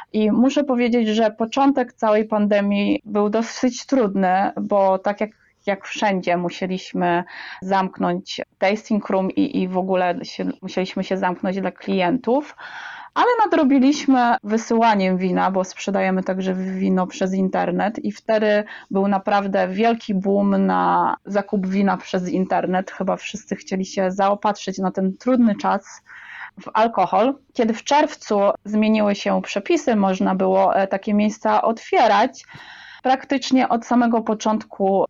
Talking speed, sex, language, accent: 130 wpm, female, Polish, native